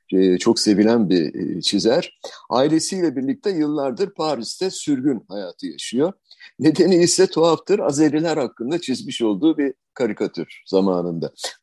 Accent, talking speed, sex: native, 110 wpm, male